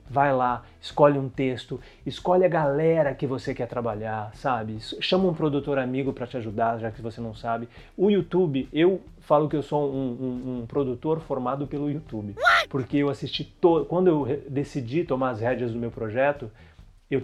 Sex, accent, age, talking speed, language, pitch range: male, Brazilian, 30-49, 185 wpm, Portuguese, 120-155 Hz